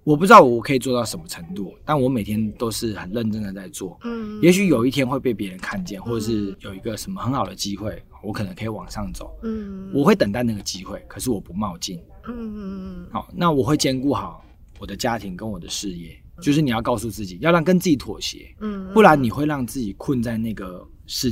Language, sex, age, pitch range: Chinese, male, 20-39, 105-150 Hz